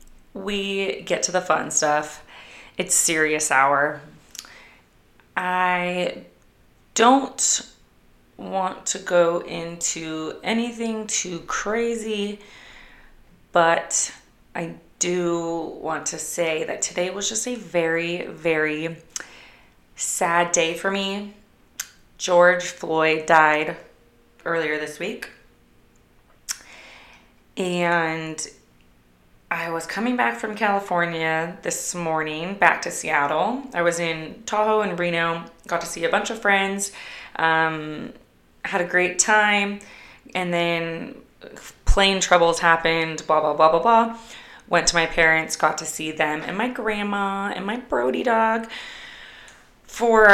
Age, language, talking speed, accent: 20-39, English, 115 wpm, American